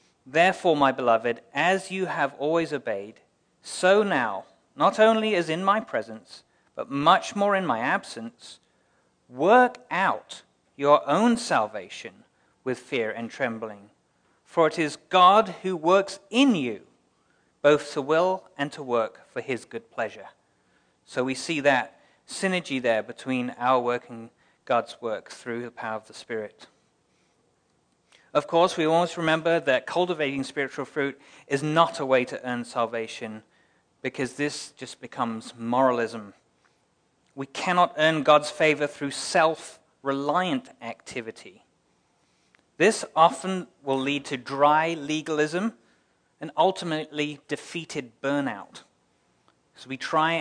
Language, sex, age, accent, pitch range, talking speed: English, male, 40-59, British, 125-175 Hz, 130 wpm